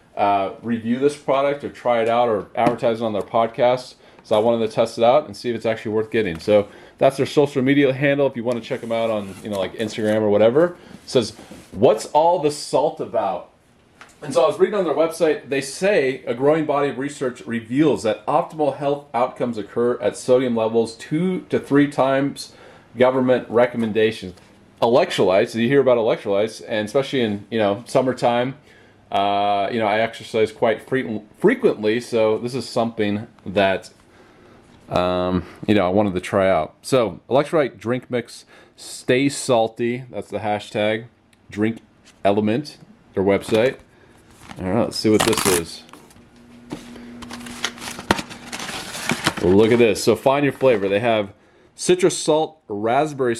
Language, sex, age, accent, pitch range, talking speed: English, male, 30-49, American, 105-130 Hz, 165 wpm